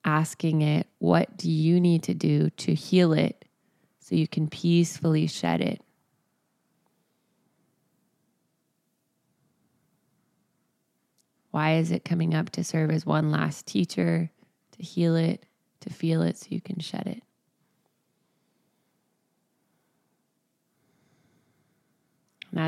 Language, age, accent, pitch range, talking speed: English, 20-39, American, 145-165 Hz, 105 wpm